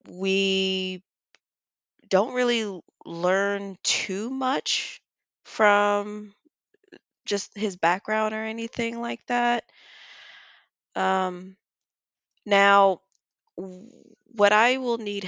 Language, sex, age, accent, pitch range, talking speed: English, female, 20-39, American, 165-215 Hz, 80 wpm